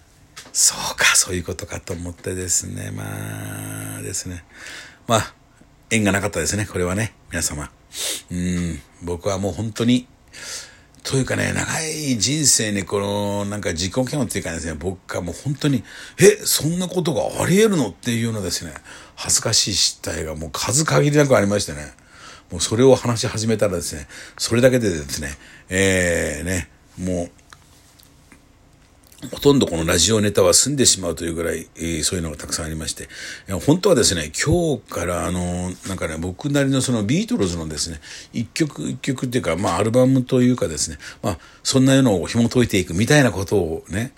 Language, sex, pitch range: Japanese, male, 85-125 Hz